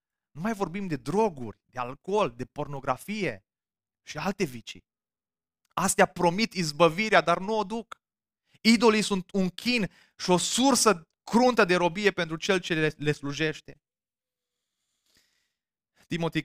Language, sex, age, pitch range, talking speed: Romanian, male, 20-39, 130-175 Hz, 130 wpm